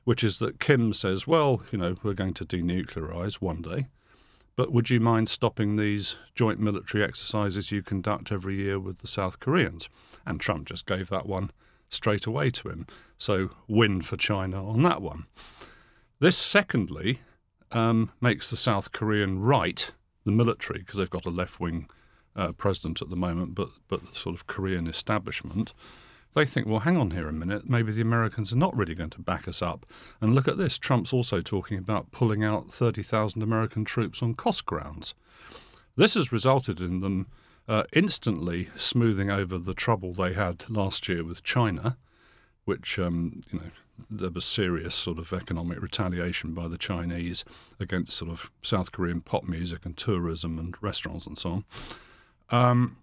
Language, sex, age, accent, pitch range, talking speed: English, male, 50-69, British, 90-115 Hz, 175 wpm